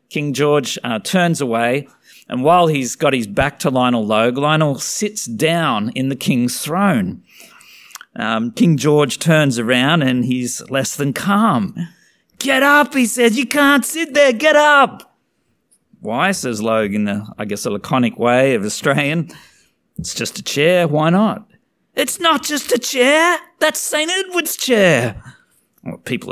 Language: English